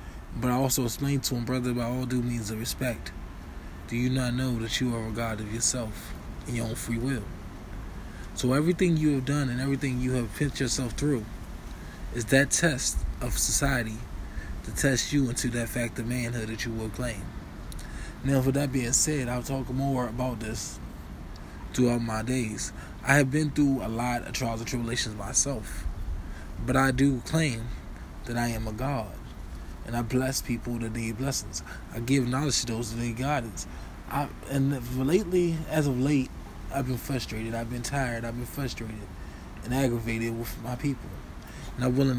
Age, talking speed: 20-39, 185 wpm